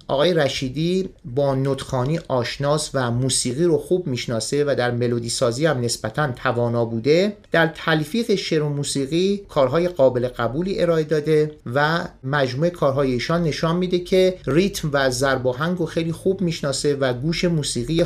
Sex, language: male, Persian